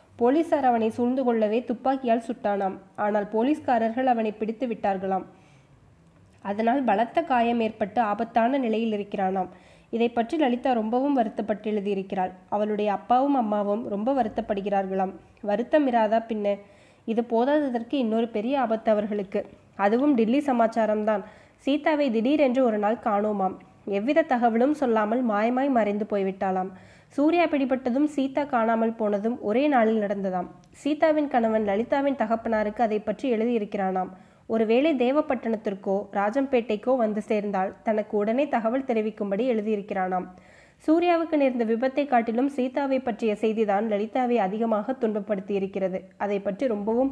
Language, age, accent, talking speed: Tamil, 20-39, native, 115 wpm